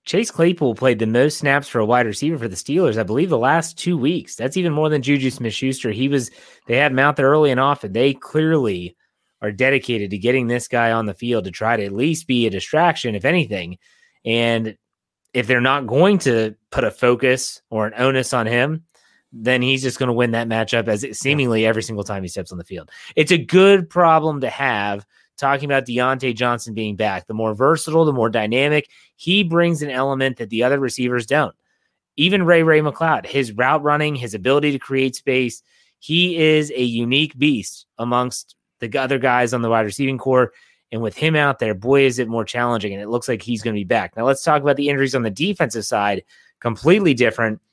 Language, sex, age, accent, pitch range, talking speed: English, male, 30-49, American, 115-150 Hz, 215 wpm